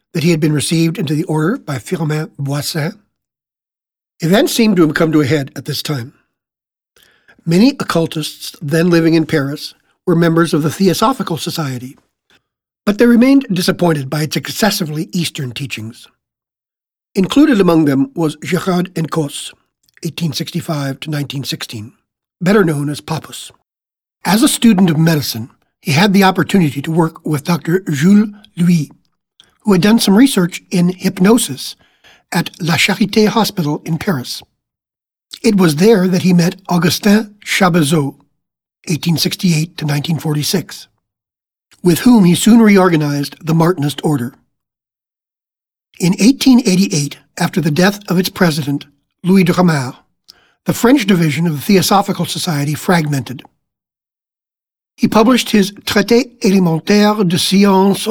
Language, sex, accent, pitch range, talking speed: English, male, American, 150-195 Hz, 130 wpm